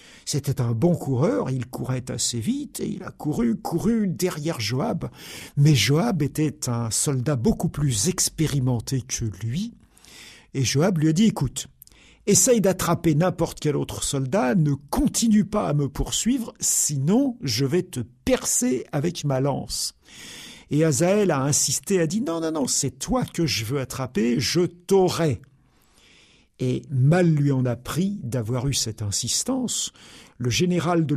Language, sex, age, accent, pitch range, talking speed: French, male, 60-79, French, 125-175 Hz, 155 wpm